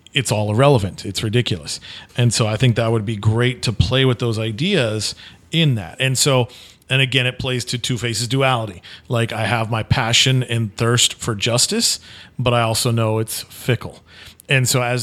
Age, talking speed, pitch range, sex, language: 40-59, 190 wpm, 115-130 Hz, male, English